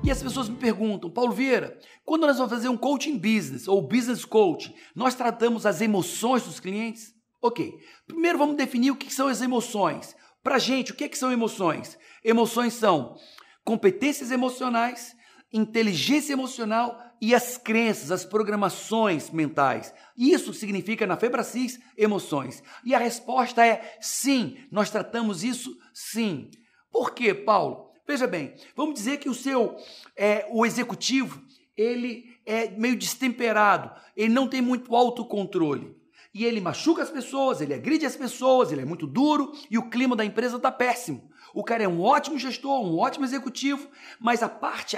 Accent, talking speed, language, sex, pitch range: Brazilian, 160 wpm, Portuguese, male, 220-265 Hz